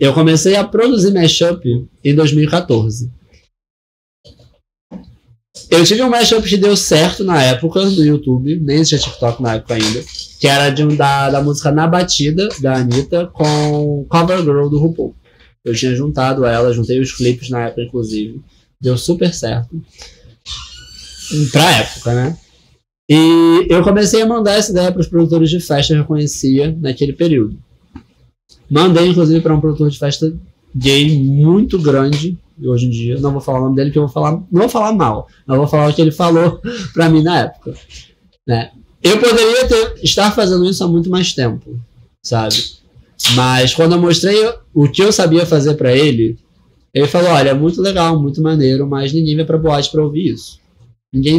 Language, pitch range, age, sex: Portuguese, 125-170 Hz, 20-39, male